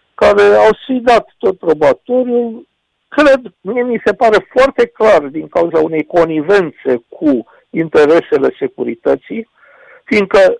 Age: 60-79